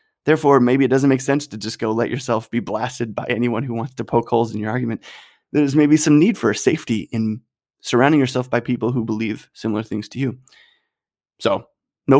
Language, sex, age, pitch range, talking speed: English, male, 20-39, 115-135 Hz, 205 wpm